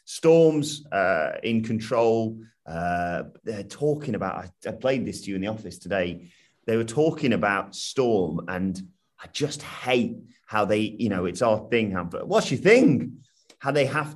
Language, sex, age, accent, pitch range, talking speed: English, male, 30-49, British, 100-135 Hz, 175 wpm